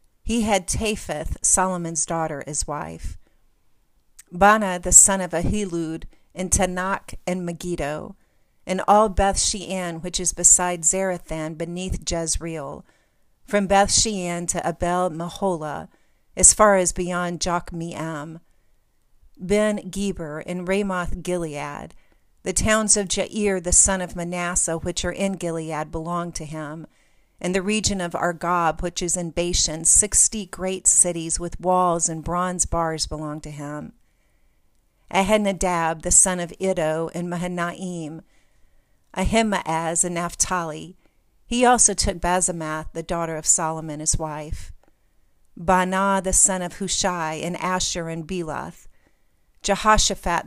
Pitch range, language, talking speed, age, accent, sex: 165-190 Hz, English, 125 wpm, 40-59, American, female